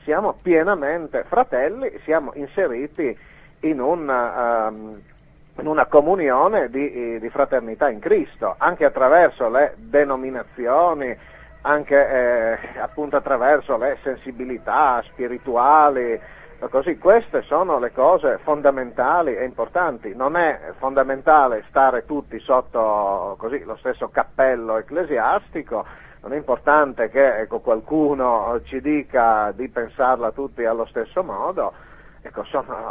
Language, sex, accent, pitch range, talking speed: Italian, male, native, 115-145 Hz, 115 wpm